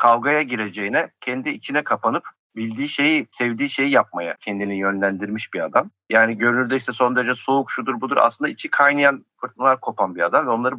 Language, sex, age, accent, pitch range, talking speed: Turkish, male, 50-69, native, 105-130 Hz, 170 wpm